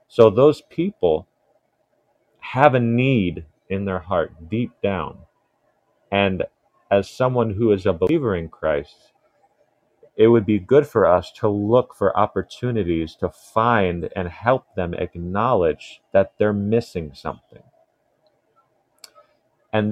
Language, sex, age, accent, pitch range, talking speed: English, male, 40-59, American, 90-115 Hz, 125 wpm